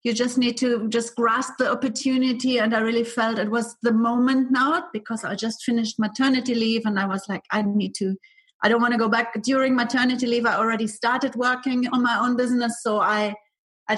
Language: English